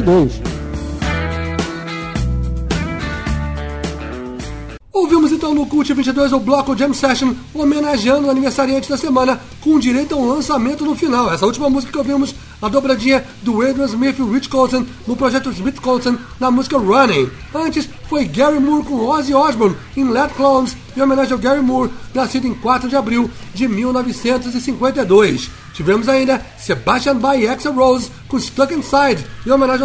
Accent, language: Brazilian, English